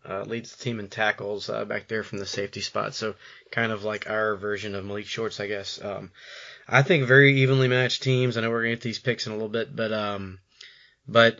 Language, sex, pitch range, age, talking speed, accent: English, male, 105-135 Hz, 20-39, 235 wpm, American